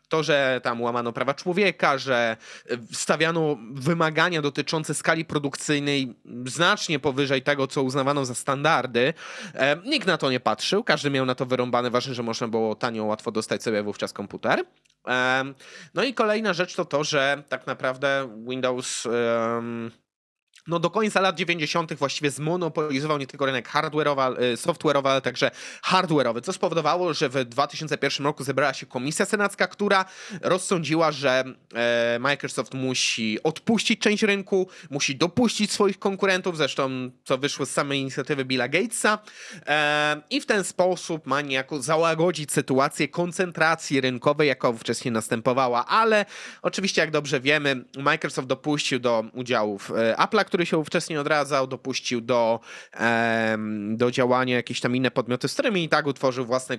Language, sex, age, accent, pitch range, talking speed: Polish, male, 20-39, native, 130-170 Hz, 145 wpm